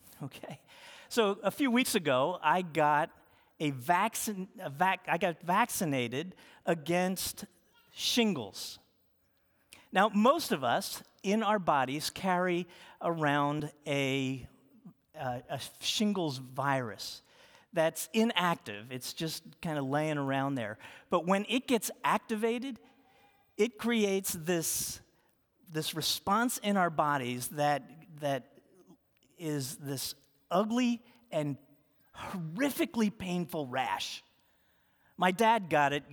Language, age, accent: English, 50-69, American